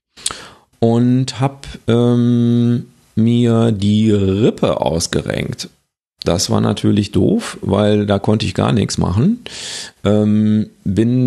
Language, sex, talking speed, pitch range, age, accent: German, male, 100 wpm, 105-130 Hz, 40-59, German